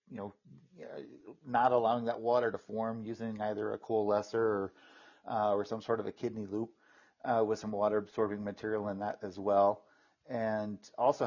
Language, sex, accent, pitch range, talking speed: English, male, American, 105-125 Hz, 175 wpm